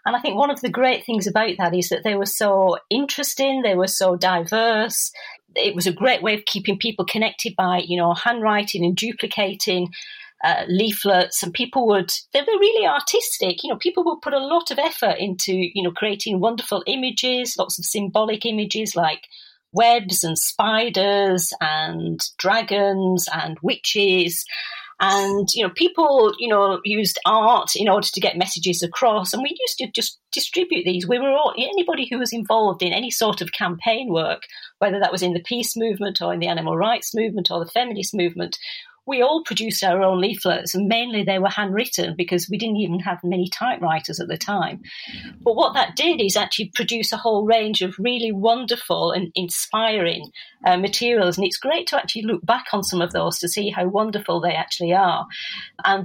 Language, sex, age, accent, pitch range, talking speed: English, female, 40-59, British, 185-235 Hz, 190 wpm